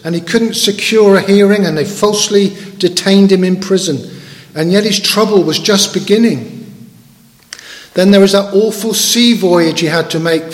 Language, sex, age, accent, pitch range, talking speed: English, male, 50-69, British, 150-195 Hz, 175 wpm